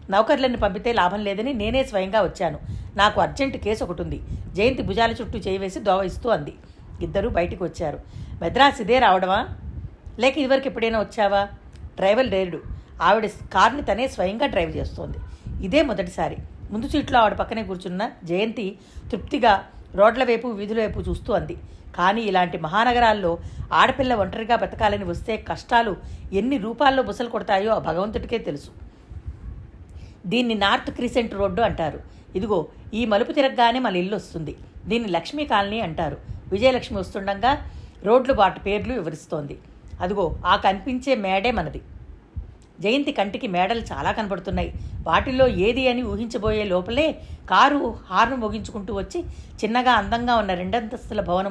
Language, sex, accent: Telugu, female, native